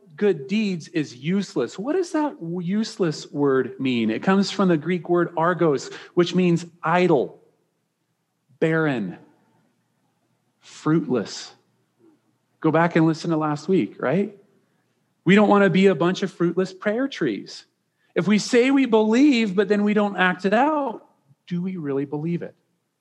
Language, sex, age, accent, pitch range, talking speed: English, male, 40-59, American, 145-200 Hz, 150 wpm